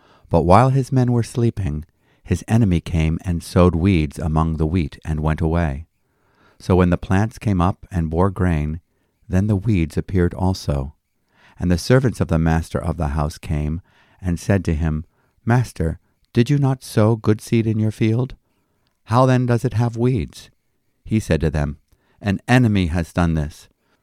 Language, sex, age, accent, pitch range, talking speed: English, male, 50-69, American, 80-105 Hz, 175 wpm